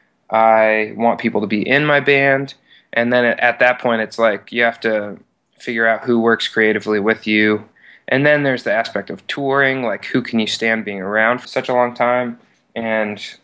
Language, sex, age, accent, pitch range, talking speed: English, male, 20-39, American, 110-125 Hz, 200 wpm